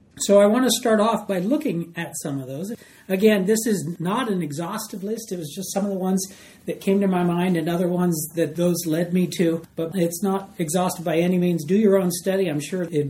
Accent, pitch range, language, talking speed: American, 160-215 Hz, English, 245 wpm